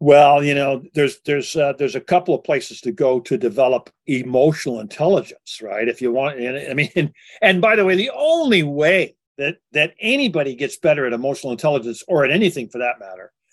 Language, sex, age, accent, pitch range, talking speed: English, male, 50-69, American, 140-195 Hz, 195 wpm